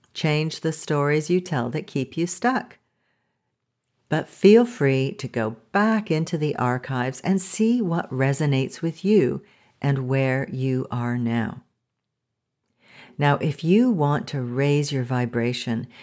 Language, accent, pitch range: English, American, 130-175 Hz